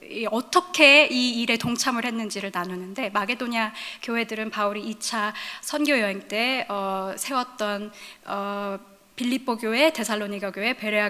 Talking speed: 105 wpm